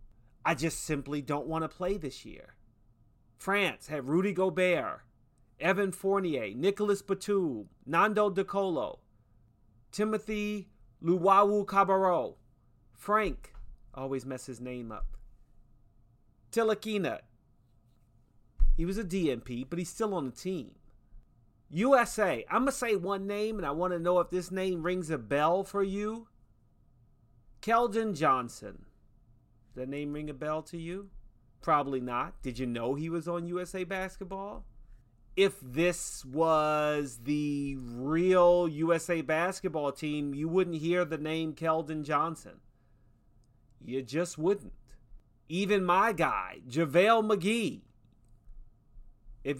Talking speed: 120 wpm